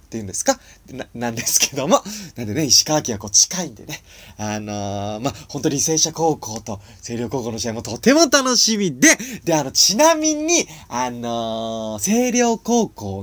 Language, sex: Japanese, male